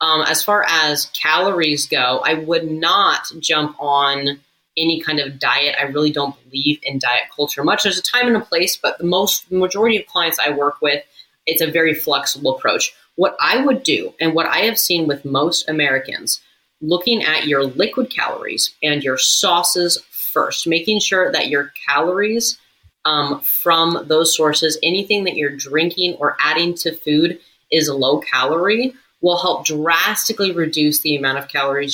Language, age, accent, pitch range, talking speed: English, 30-49, American, 145-175 Hz, 175 wpm